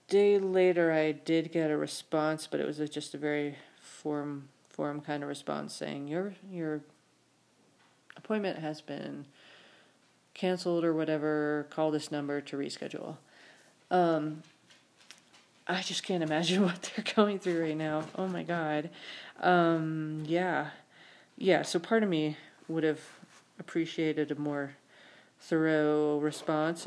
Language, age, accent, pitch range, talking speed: English, 40-59, American, 150-175 Hz, 135 wpm